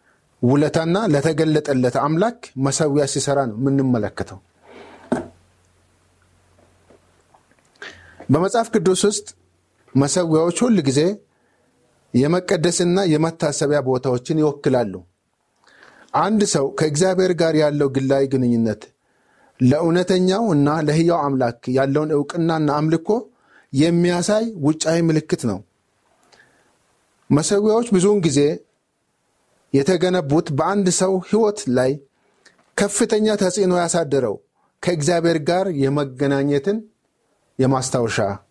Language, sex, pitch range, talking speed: Amharic, male, 130-190 Hz, 85 wpm